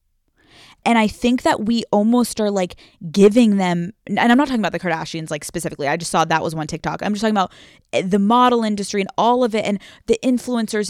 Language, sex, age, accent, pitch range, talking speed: English, female, 20-39, American, 185-240 Hz, 220 wpm